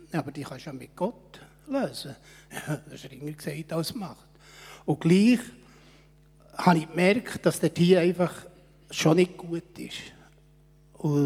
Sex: male